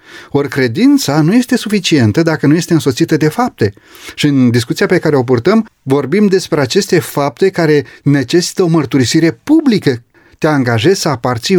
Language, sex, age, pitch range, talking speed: Romanian, male, 30-49, 140-185 Hz, 160 wpm